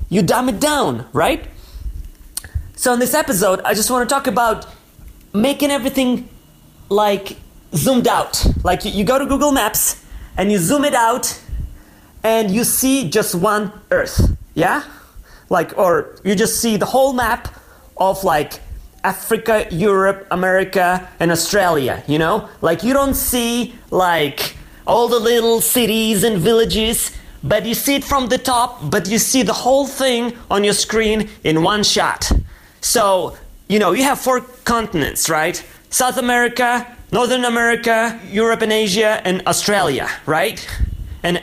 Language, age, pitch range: English, 30-49, 195-245 Hz